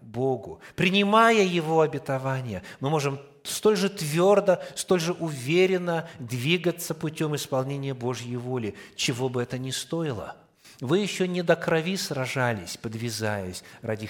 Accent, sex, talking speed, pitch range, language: native, male, 125 wpm, 110-150 Hz, Russian